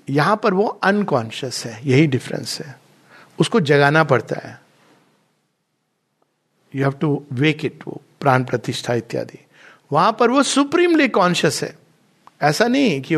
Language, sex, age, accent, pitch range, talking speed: Hindi, male, 60-79, native, 140-195 Hz, 135 wpm